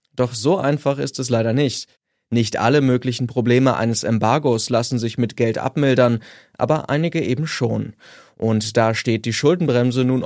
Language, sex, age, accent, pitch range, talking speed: German, male, 20-39, German, 115-135 Hz, 165 wpm